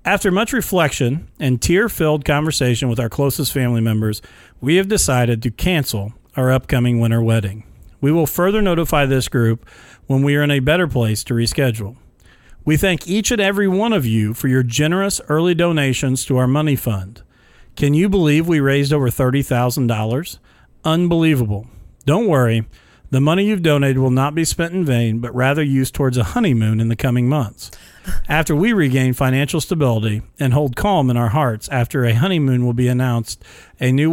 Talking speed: 180 wpm